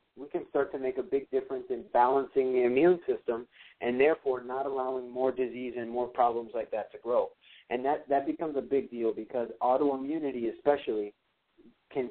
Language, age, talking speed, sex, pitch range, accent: English, 50-69, 185 wpm, male, 120-155 Hz, American